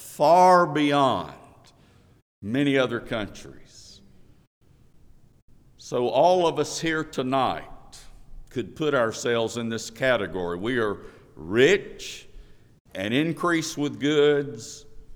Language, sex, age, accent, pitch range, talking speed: English, male, 50-69, American, 105-140 Hz, 95 wpm